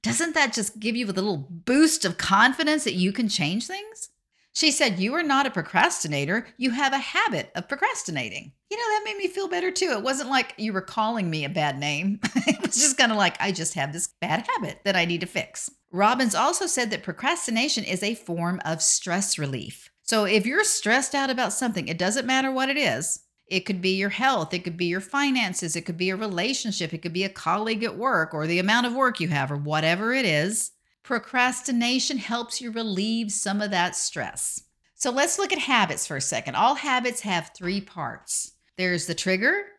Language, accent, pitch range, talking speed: English, American, 175-260 Hz, 215 wpm